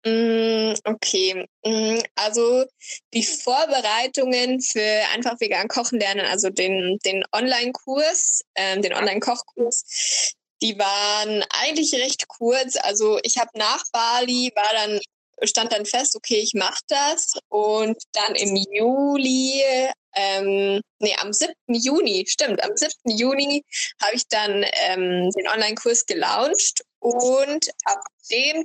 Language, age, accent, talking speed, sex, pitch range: German, 20-39, German, 120 wpm, female, 210-275 Hz